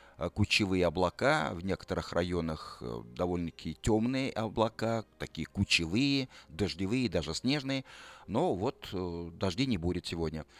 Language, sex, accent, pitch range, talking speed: Russian, male, native, 90-125 Hz, 110 wpm